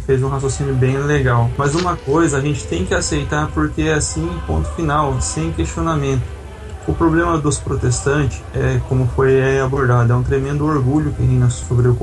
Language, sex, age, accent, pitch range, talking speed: Portuguese, male, 20-39, Brazilian, 120-140 Hz, 175 wpm